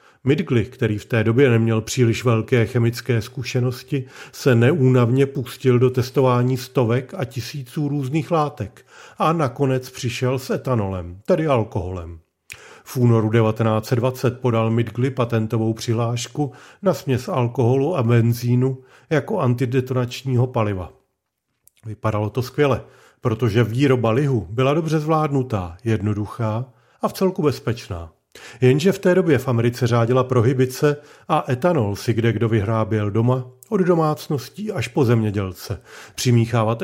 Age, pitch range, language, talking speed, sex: 40-59, 115-135 Hz, Czech, 125 wpm, male